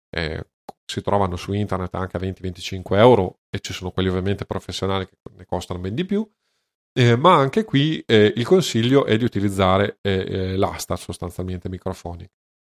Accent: native